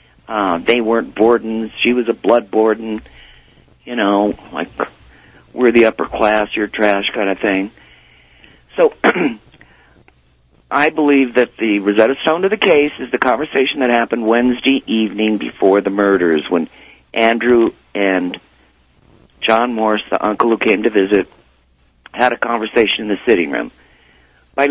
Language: English